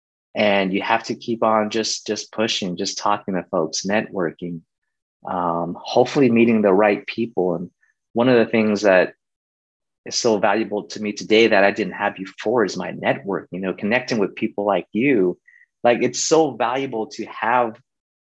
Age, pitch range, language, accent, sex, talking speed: 30-49, 90-115 Hz, English, American, male, 180 wpm